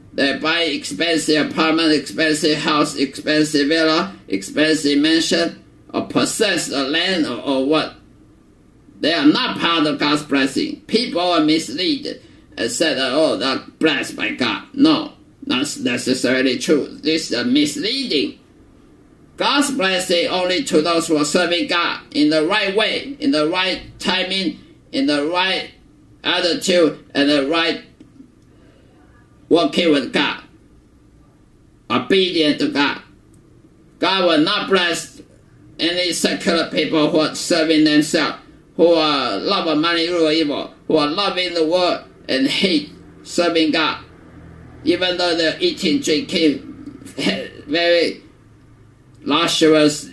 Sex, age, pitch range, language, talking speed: male, 50-69, 150-190 Hz, English, 130 wpm